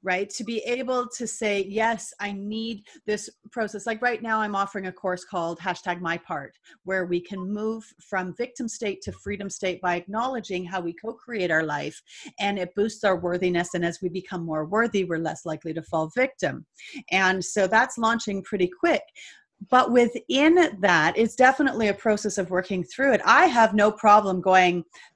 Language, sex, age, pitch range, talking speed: English, female, 30-49, 185-225 Hz, 185 wpm